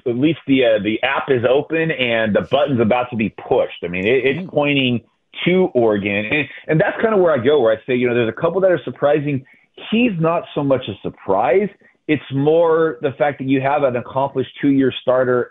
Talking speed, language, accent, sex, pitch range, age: 220 wpm, English, American, male, 120-145 Hz, 30-49